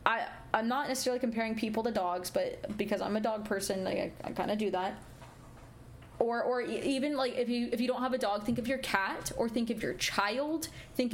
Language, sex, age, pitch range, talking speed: English, female, 20-39, 205-260 Hz, 230 wpm